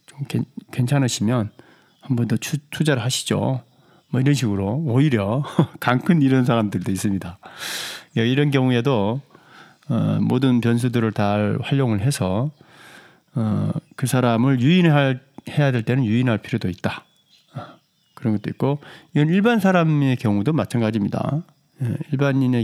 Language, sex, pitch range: Korean, male, 110-155 Hz